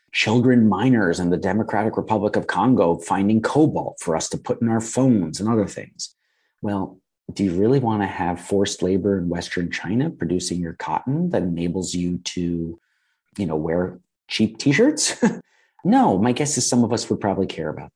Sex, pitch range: male, 95-125 Hz